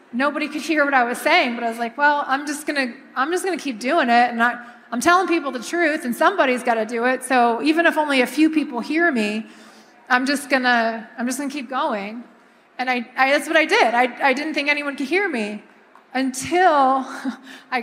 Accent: American